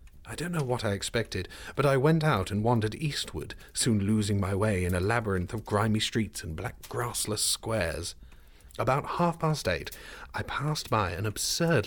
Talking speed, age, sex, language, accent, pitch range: 175 wpm, 40-59, male, English, British, 105-140 Hz